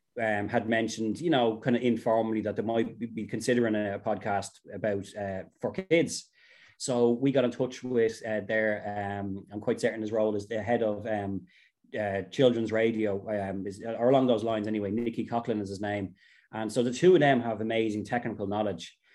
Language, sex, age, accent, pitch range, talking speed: English, male, 20-39, Irish, 105-115 Hz, 195 wpm